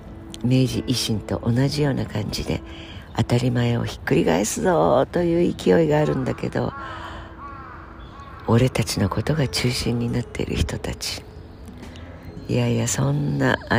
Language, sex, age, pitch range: Japanese, female, 50-69, 85-120 Hz